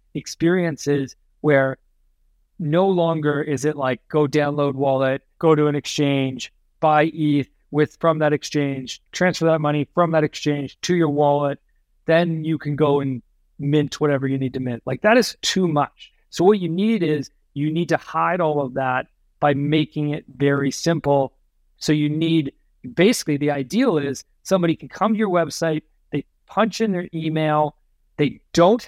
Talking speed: 170 wpm